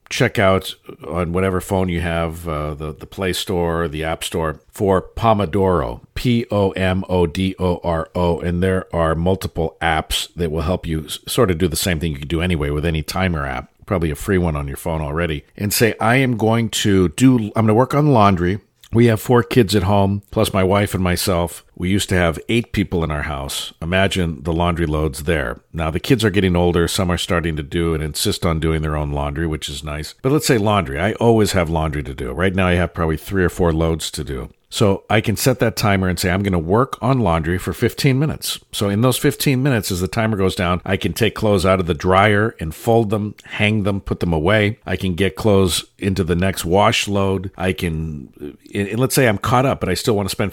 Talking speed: 230 wpm